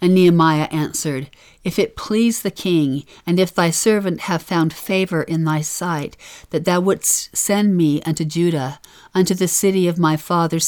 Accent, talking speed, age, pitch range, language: American, 175 wpm, 50-69, 145-175 Hz, English